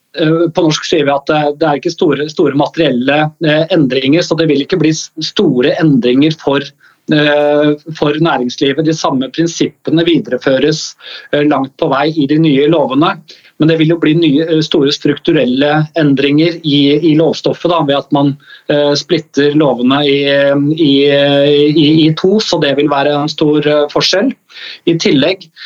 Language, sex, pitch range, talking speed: English, male, 140-160 Hz, 150 wpm